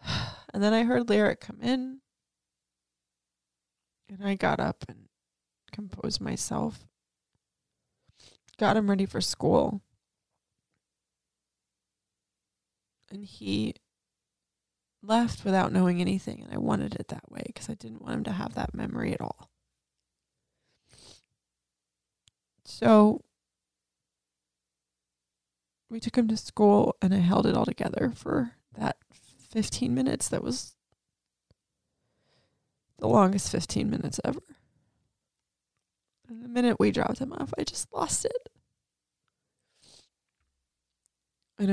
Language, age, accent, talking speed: English, 20-39, American, 110 wpm